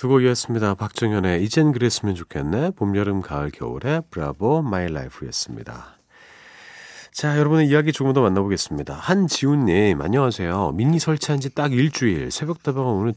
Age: 40-59